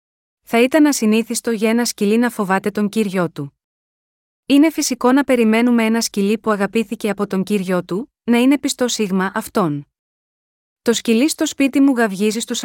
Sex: female